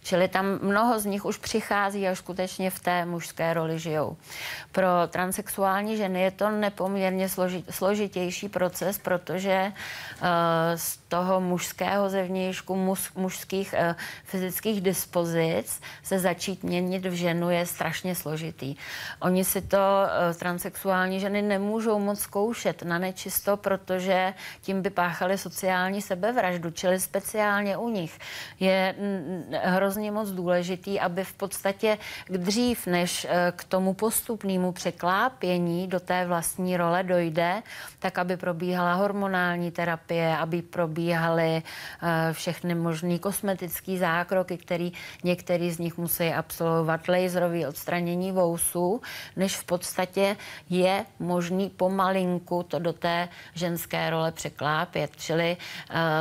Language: Czech